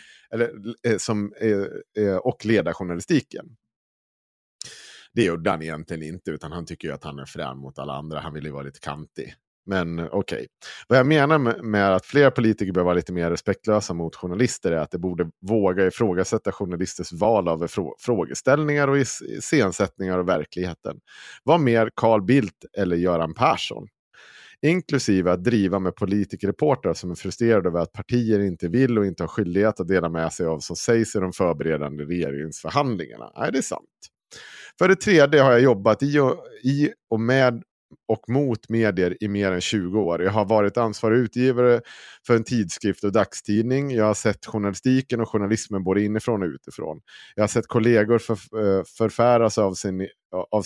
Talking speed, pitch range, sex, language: 170 wpm, 90-120 Hz, male, Swedish